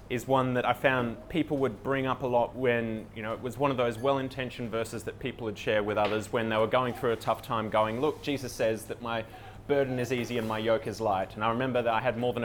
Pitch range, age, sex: 110-130 Hz, 20-39, male